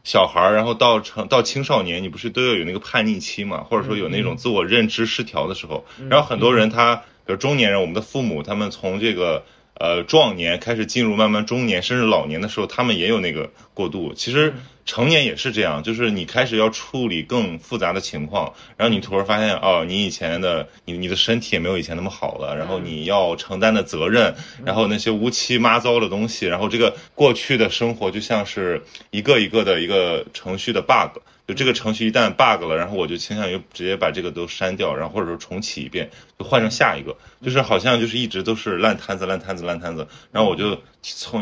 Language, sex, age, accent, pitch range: Chinese, male, 20-39, Polish, 95-120 Hz